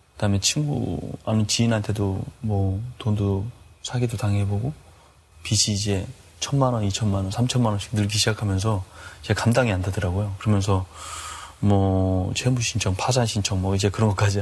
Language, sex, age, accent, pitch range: Korean, male, 20-39, native, 95-125 Hz